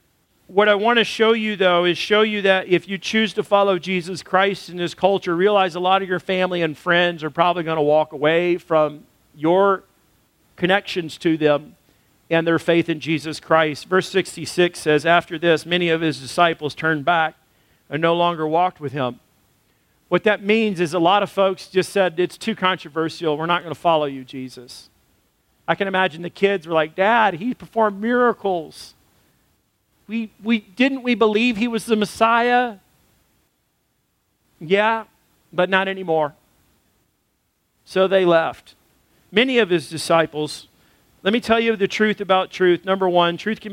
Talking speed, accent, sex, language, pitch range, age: 175 wpm, American, male, English, 160-195 Hz, 40-59